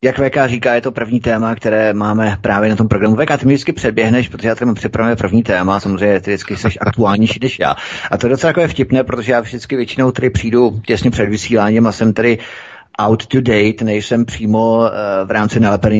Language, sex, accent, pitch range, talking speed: Czech, male, native, 100-120 Hz, 215 wpm